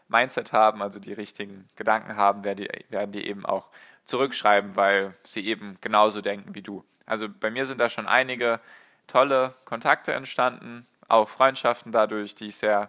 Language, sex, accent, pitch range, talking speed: German, male, German, 100-120 Hz, 165 wpm